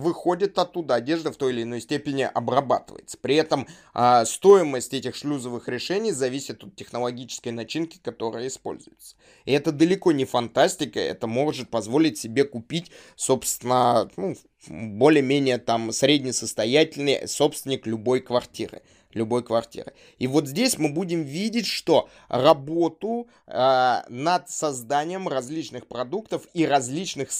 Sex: male